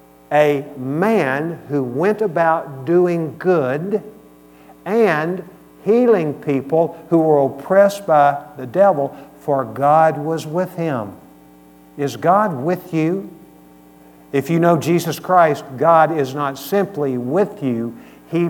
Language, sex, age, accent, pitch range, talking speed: English, male, 50-69, American, 120-170 Hz, 120 wpm